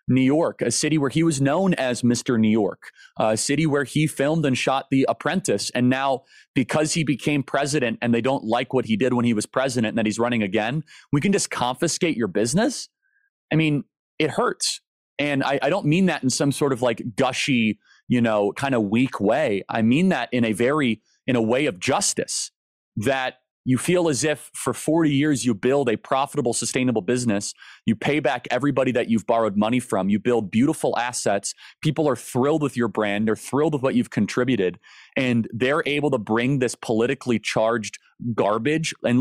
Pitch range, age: 115-150 Hz, 30-49